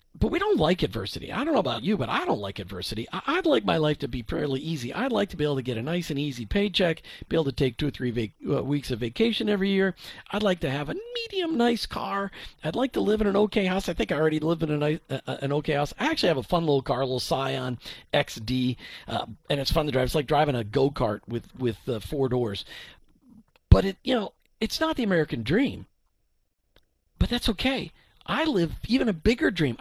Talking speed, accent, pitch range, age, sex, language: 250 wpm, American, 135-220 Hz, 50-69, male, English